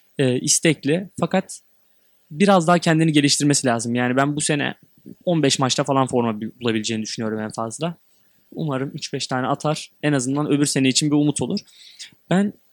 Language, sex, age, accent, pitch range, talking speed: Turkish, male, 20-39, native, 130-185 Hz, 155 wpm